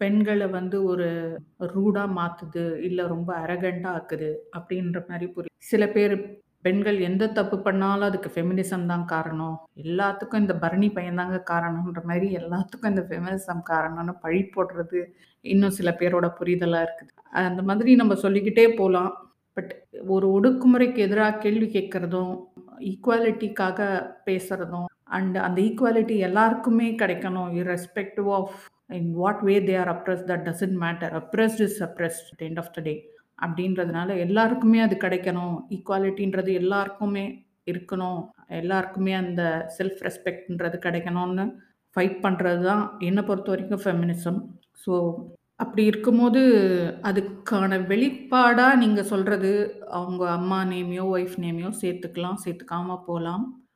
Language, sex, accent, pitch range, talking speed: Tamil, female, native, 175-205 Hz, 120 wpm